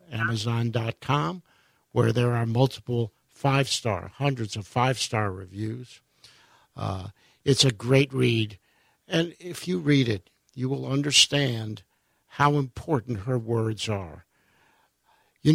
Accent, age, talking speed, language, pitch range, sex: American, 60-79, 110 wpm, English, 115-140 Hz, male